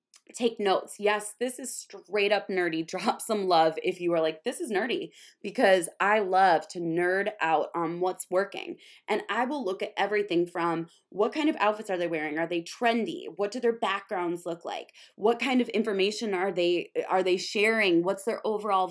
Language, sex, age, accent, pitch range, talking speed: English, female, 20-39, American, 180-245 Hz, 195 wpm